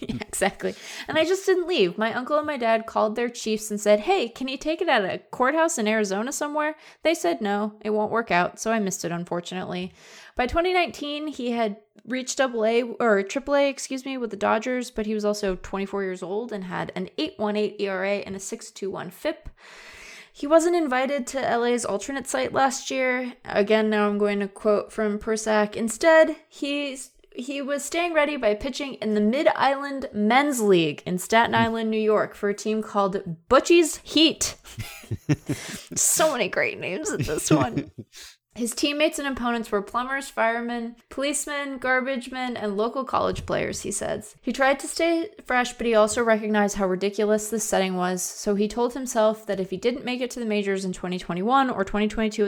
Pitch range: 205-270 Hz